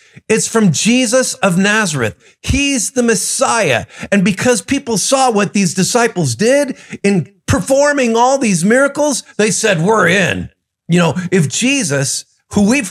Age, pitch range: 50-69, 165-225 Hz